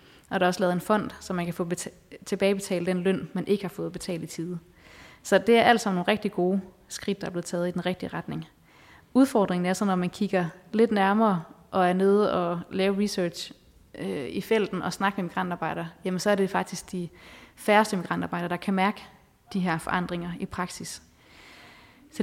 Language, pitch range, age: Danish, 180-205 Hz, 20-39